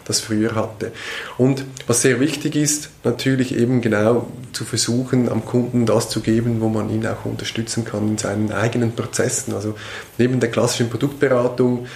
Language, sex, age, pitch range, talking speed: German, male, 20-39, 110-125 Hz, 165 wpm